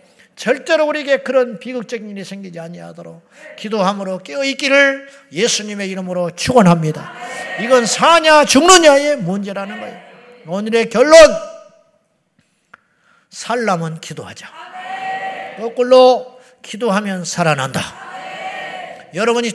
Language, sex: Korean, male